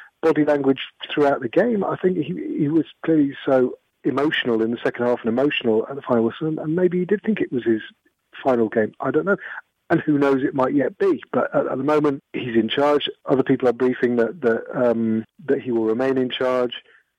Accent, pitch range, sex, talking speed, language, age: British, 115-150 Hz, male, 225 wpm, English, 40-59